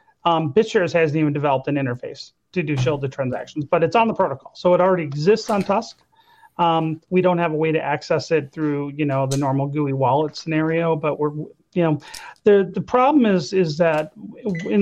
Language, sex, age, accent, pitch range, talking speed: English, male, 40-59, American, 155-195 Hz, 205 wpm